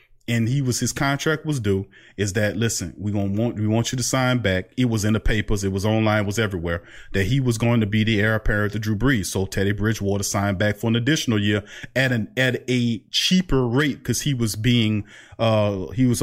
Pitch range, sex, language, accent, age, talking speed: 110-145 Hz, male, English, American, 30-49, 235 wpm